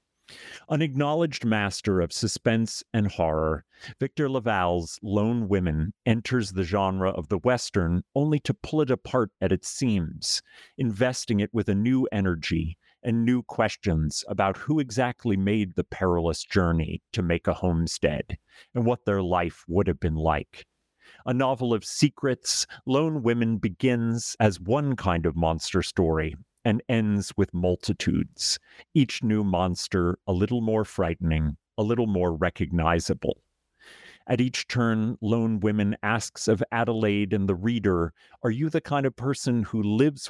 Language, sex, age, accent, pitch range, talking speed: English, male, 40-59, American, 90-120 Hz, 150 wpm